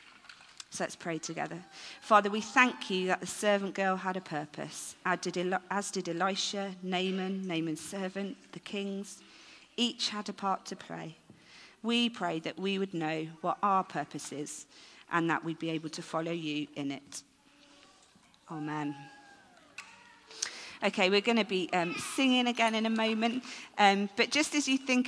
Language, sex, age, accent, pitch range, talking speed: English, female, 40-59, British, 175-215 Hz, 160 wpm